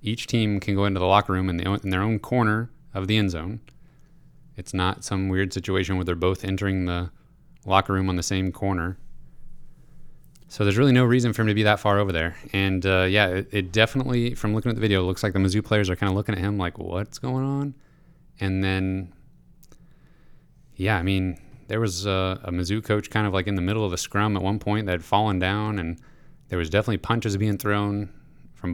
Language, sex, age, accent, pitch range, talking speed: English, male, 30-49, American, 95-115 Hz, 230 wpm